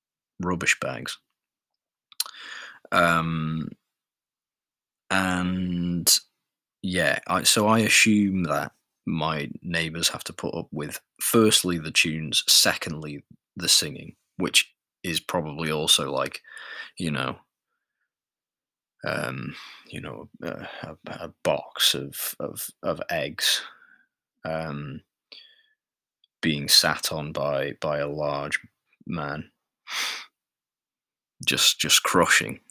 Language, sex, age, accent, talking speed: English, male, 20-39, British, 95 wpm